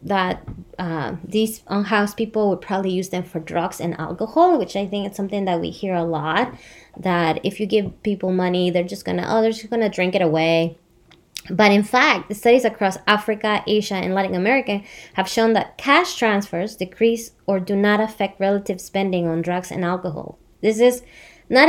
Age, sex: 20-39, female